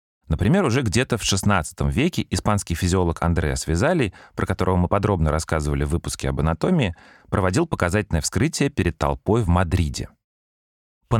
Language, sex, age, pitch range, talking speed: Russian, male, 30-49, 80-110 Hz, 145 wpm